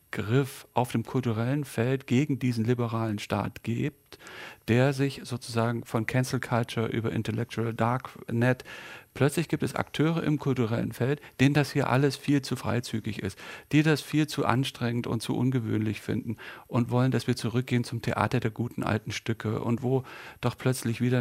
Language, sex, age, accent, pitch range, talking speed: German, male, 40-59, German, 110-130 Hz, 165 wpm